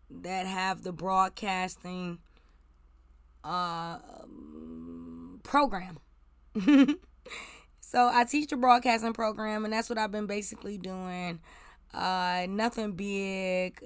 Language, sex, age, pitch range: English, female, 20-39, 175-220 Hz